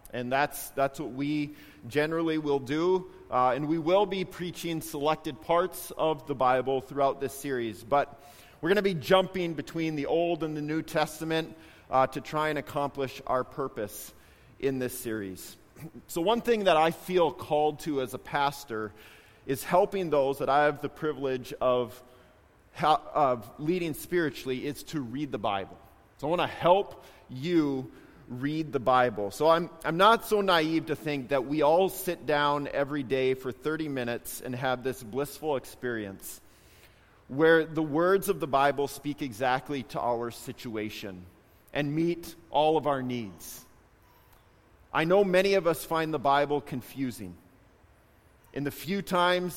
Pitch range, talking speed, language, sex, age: 125-160 Hz, 165 wpm, English, male, 30-49